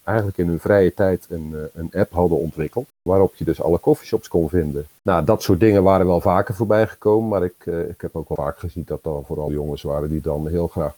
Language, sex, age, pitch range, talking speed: Dutch, male, 50-69, 85-100 Hz, 240 wpm